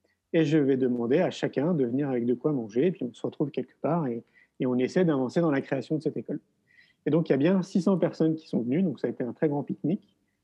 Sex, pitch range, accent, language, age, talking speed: male, 135-180 Hz, French, French, 30-49, 280 wpm